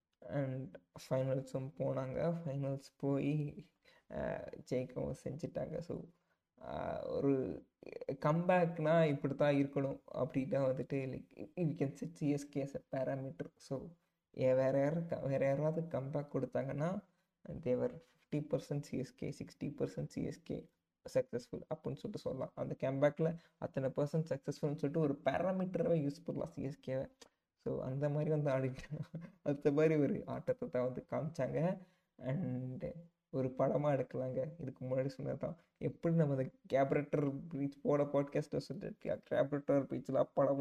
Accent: native